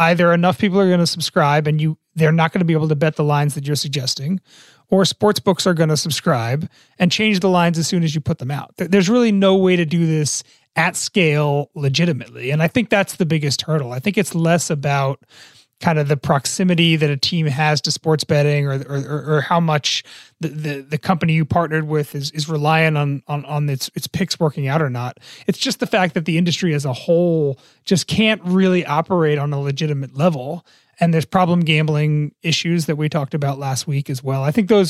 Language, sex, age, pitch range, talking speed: English, male, 30-49, 145-175 Hz, 225 wpm